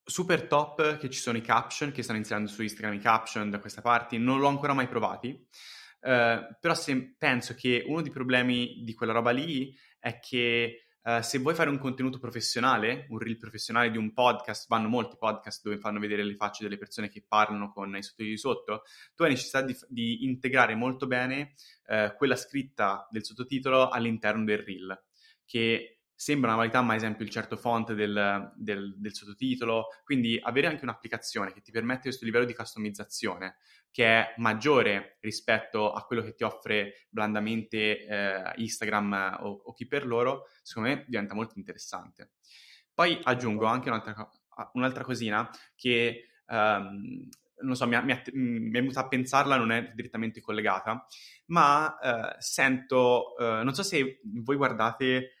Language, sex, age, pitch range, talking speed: Italian, male, 20-39, 110-130 Hz, 170 wpm